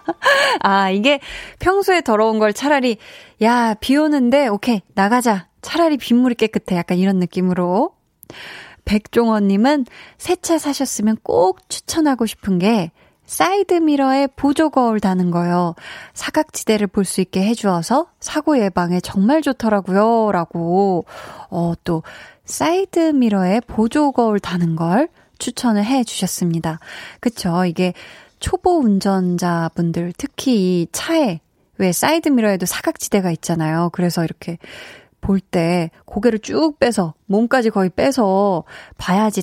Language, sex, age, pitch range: Korean, female, 20-39, 180-265 Hz